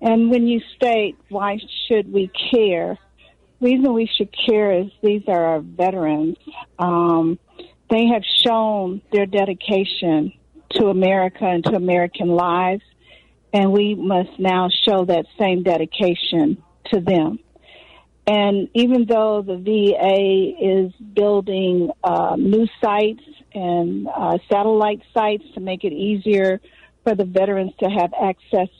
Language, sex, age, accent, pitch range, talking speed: English, female, 50-69, American, 180-215 Hz, 135 wpm